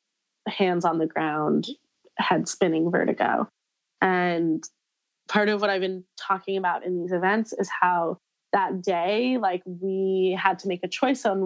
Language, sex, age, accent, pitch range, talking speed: English, female, 20-39, American, 180-210 Hz, 155 wpm